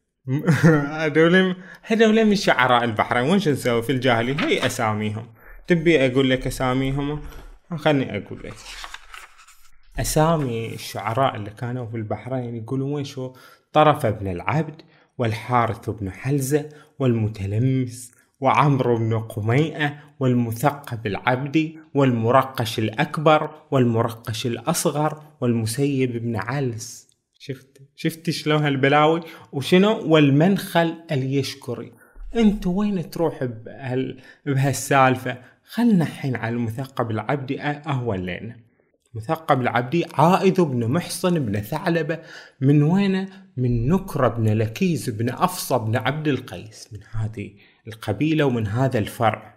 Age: 20-39